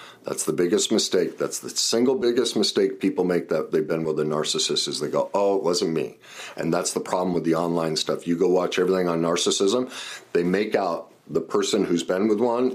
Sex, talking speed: male, 220 wpm